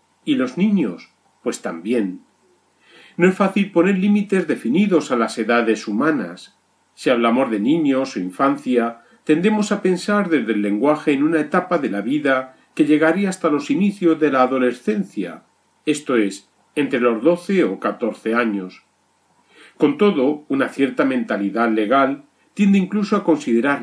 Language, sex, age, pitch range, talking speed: Spanish, male, 40-59, 135-200 Hz, 150 wpm